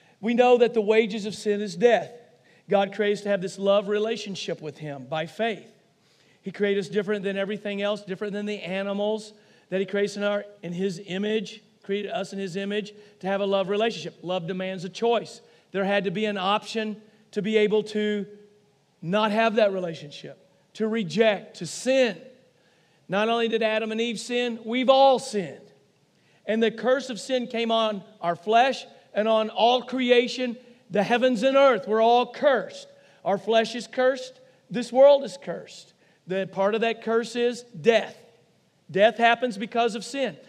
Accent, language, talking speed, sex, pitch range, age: American, English, 180 wpm, male, 195-235 Hz, 40-59